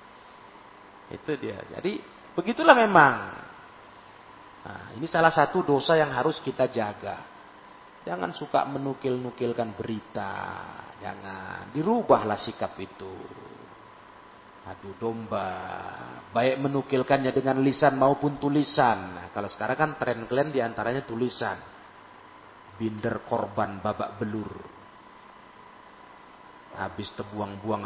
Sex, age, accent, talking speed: male, 40-59, native, 95 wpm